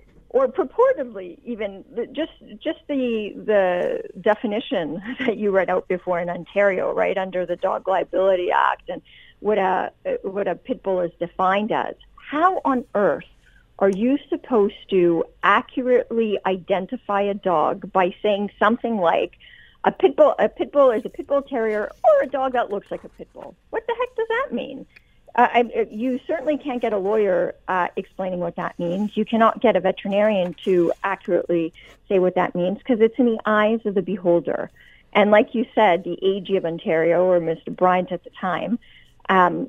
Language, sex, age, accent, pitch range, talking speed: English, female, 50-69, American, 185-250 Hz, 180 wpm